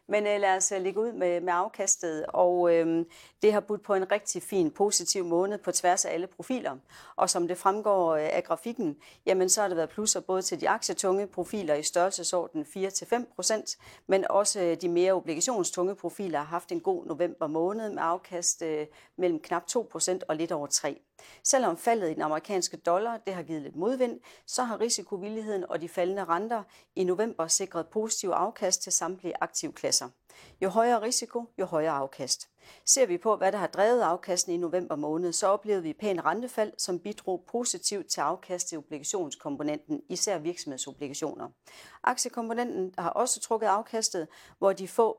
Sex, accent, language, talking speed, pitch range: female, native, Danish, 170 wpm, 170-210 Hz